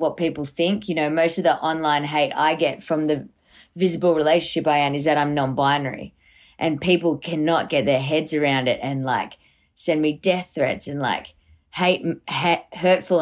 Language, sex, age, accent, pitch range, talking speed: English, female, 20-39, Australian, 140-170 Hz, 185 wpm